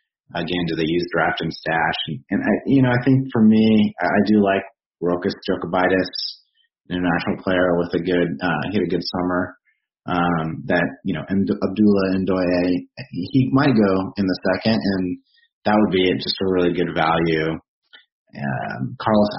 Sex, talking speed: male, 185 wpm